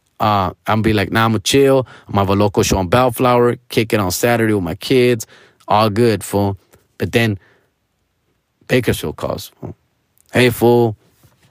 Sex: male